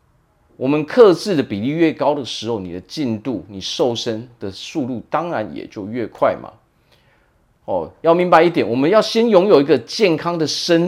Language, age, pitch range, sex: Chinese, 30-49, 105-150 Hz, male